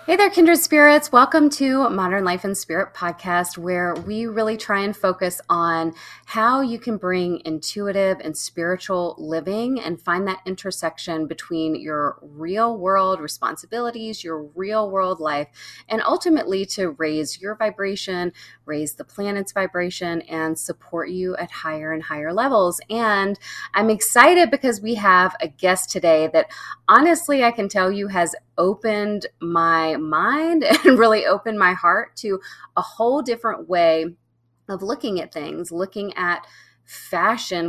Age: 20-39